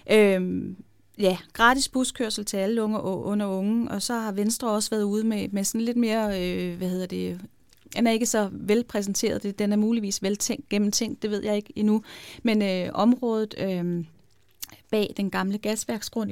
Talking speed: 180 wpm